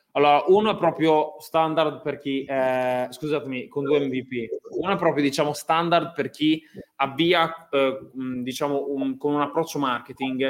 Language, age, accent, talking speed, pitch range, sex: Italian, 20-39, native, 155 wpm, 140-165 Hz, male